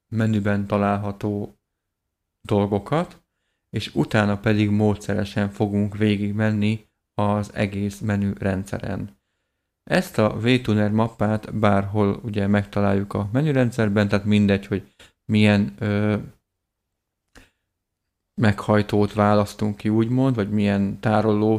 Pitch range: 100-110 Hz